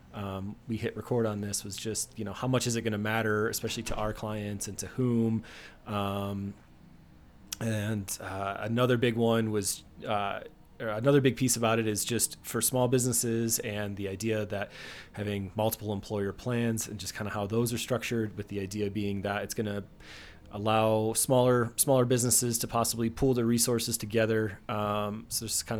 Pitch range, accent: 100-115 Hz, American